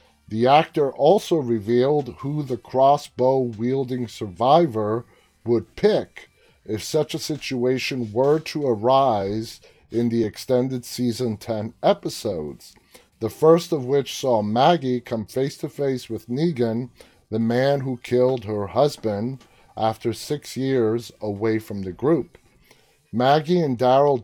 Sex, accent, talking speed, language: male, American, 120 wpm, English